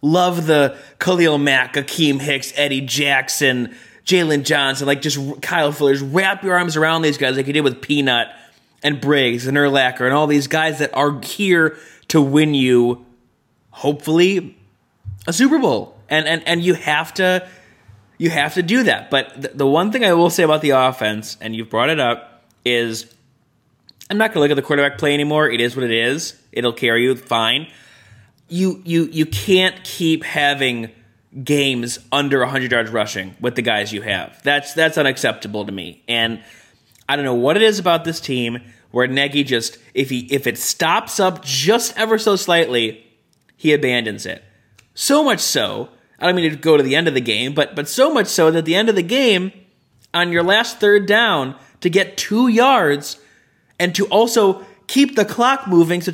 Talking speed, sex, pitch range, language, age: 195 wpm, male, 125-175 Hz, English, 20-39